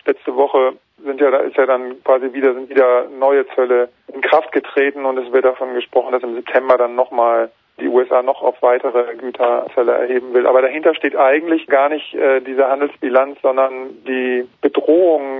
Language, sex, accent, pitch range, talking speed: German, male, German, 125-135 Hz, 185 wpm